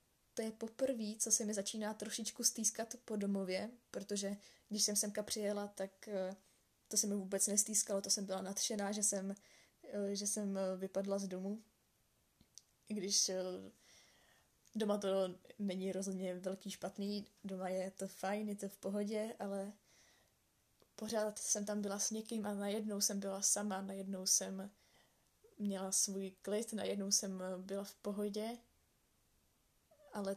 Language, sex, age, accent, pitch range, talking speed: Czech, female, 10-29, native, 195-215 Hz, 140 wpm